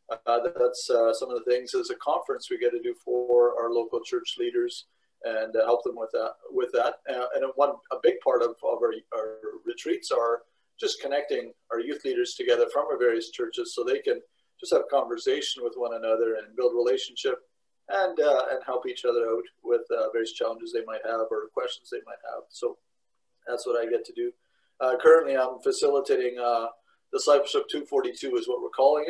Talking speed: 205 wpm